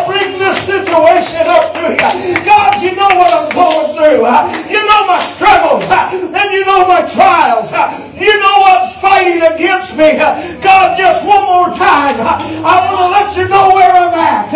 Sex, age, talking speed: male, 50-69, 175 wpm